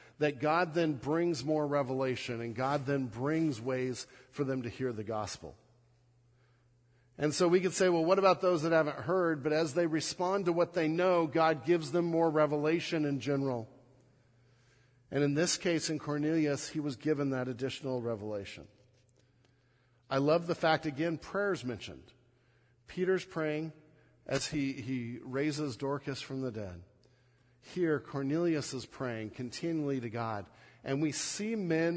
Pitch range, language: 125-175 Hz, English